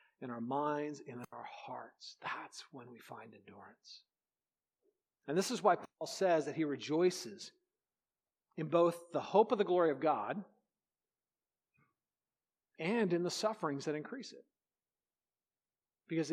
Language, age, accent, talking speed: English, 40-59, American, 135 wpm